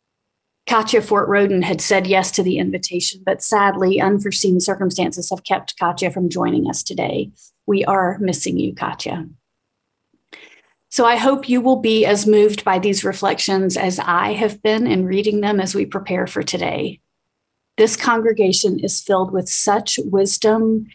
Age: 40-59